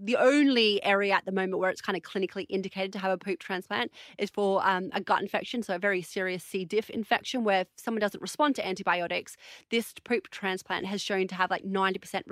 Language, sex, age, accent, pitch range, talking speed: English, female, 30-49, Australian, 190-230 Hz, 225 wpm